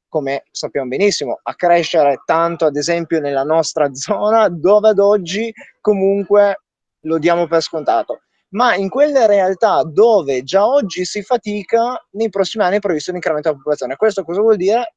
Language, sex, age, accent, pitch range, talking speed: Italian, male, 20-39, native, 155-215 Hz, 165 wpm